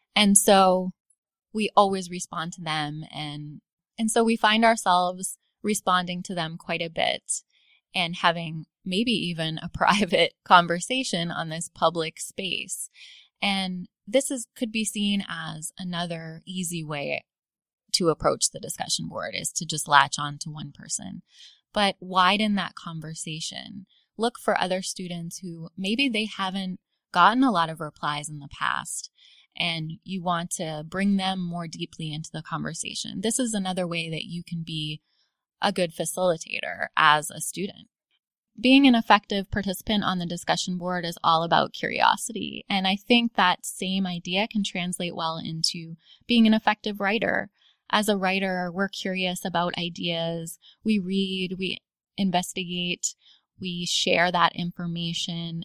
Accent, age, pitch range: American, 20-39, 170-200 Hz